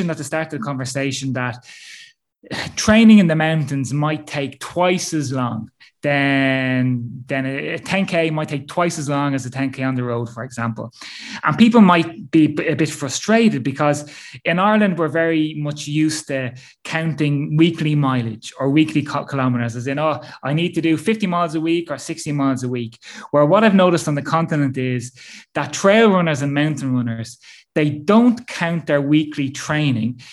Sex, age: male, 20-39